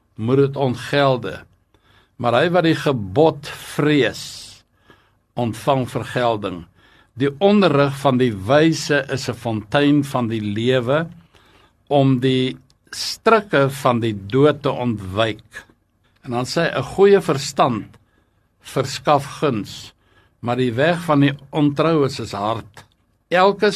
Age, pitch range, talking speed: 60-79, 120-155 Hz, 120 wpm